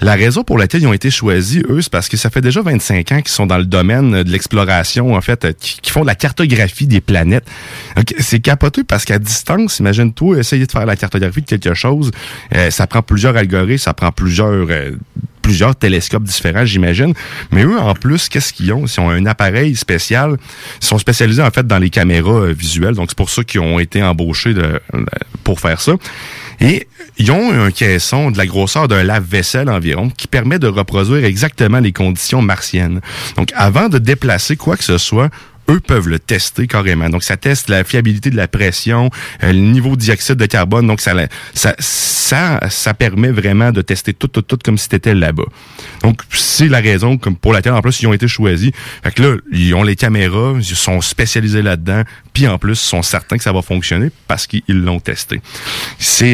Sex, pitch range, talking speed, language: male, 95-125 Hz, 205 wpm, French